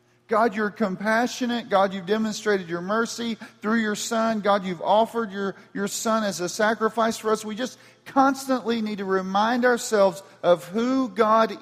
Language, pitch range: English, 175-215 Hz